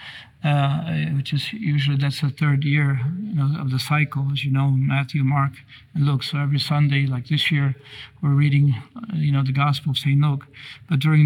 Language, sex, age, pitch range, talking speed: English, male, 50-69, 140-150 Hz, 195 wpm